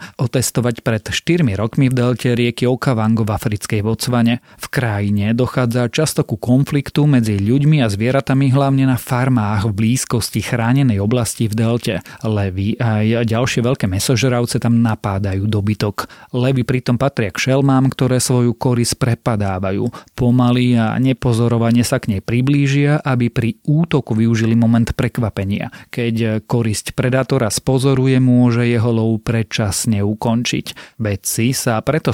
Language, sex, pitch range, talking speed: Slovak, male, 115-130 Hz, 135 wpm